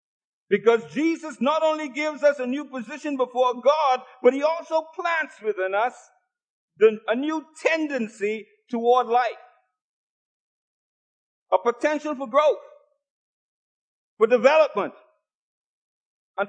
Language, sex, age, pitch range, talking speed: English, male, 50-69, 235-300 Hz, 105 wpm